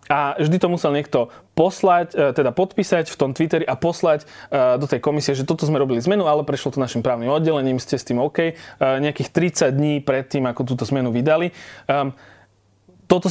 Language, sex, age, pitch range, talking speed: Slovak, male, 20-39, 135-165 Hz, 185 wpm